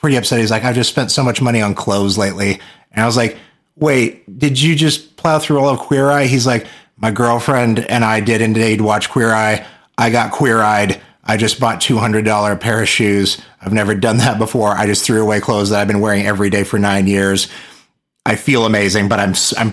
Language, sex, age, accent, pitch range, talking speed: English, male, 30-49, American, 105-130 Hz, 230 wpm